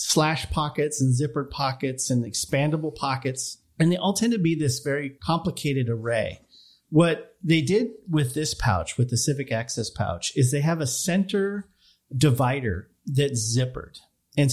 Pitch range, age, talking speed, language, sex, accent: 120-155 Hz, 40-59, 155 wpm, English, male, American